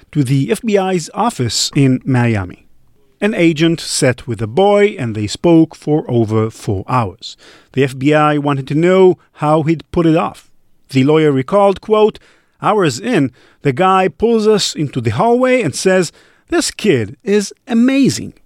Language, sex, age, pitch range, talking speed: English, male, 50-69, 130-205 Hz, 155 wpm